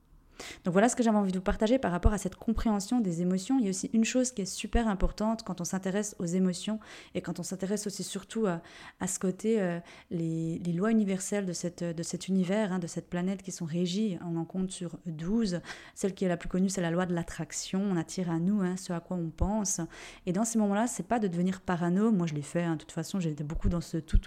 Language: French